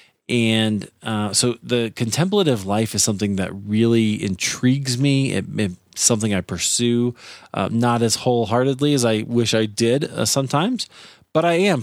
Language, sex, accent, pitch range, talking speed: English, male, American, 105-135 Hz, 150 wpm